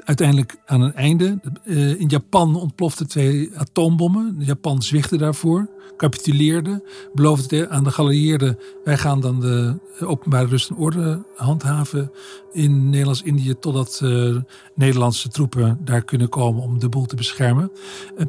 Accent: Dutch